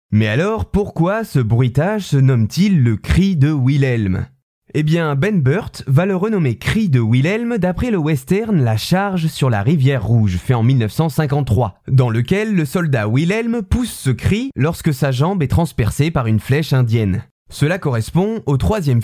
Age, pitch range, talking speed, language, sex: 20-39, 125-180 Hz, 170 wpm, French, male